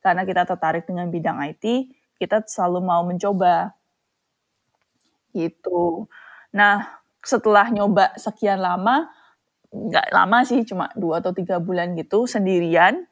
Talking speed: 120 wpm